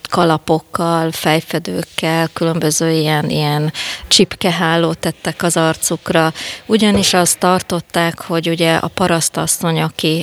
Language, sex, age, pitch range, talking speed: Hungarian, female, 30-49, 160-180 Hz, 100 wpm